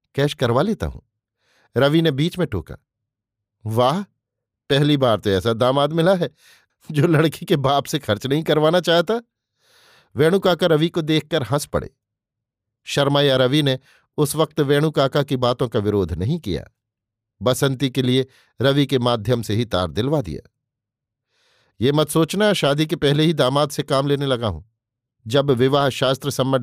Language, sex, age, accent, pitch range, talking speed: Hindi, male, 50-69, native, 115-155 Hz, 160 wpm